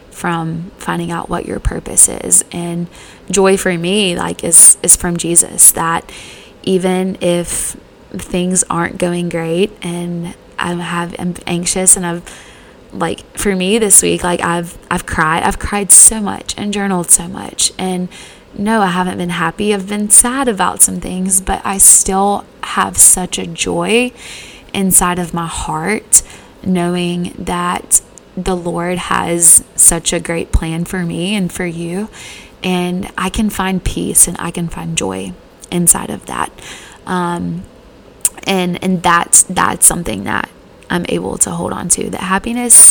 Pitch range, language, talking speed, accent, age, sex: 175-205 Hz, English, 155 wpm, American, 20-39, female